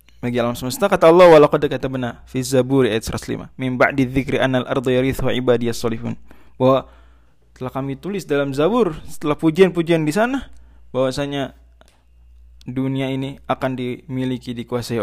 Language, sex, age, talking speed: Indonesian, male, 20-39, 150 wpm